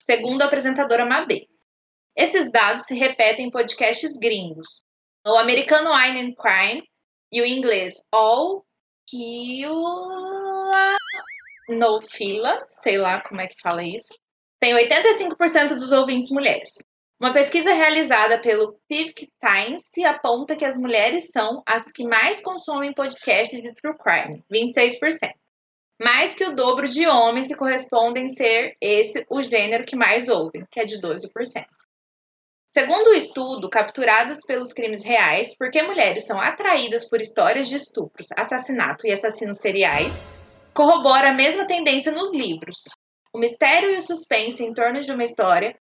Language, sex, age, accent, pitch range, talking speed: Portuguese, female, 20-39, Brazilian, 225-295 Hz, 145 wpm